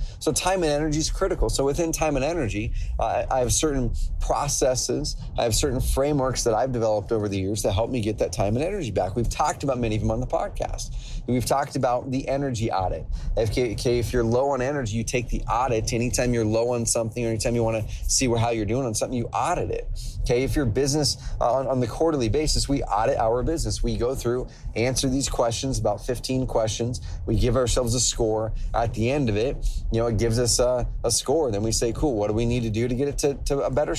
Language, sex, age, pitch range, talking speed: English, male, 30-49, 110-135 Hz, 245 wpm